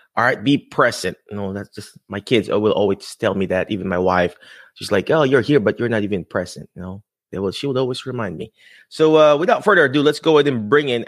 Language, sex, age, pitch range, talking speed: English, male, 20-39, 100-160 Hz, 265 wpm